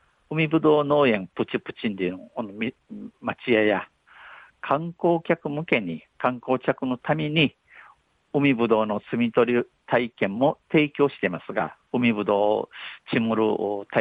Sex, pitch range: male, 105-140 Hz